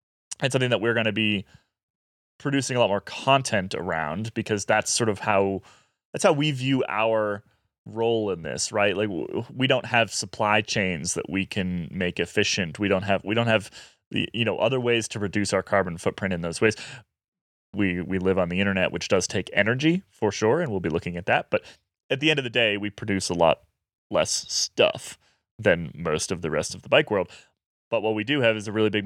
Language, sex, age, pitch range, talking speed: English, male, 20-39, 100-125 Hz, 220 wpm